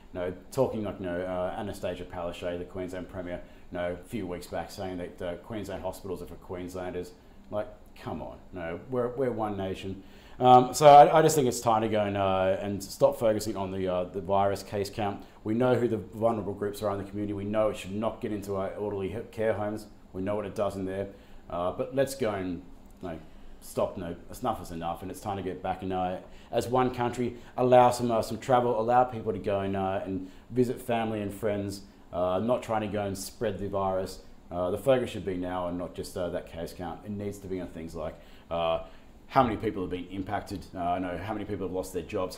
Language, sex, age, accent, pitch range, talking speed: English, male, 30-49, Australian, 90-110 Hz, 230 wpm